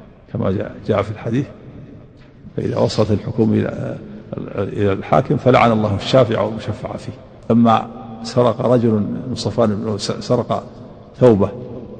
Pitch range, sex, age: 110-125 Hz, male, 50-69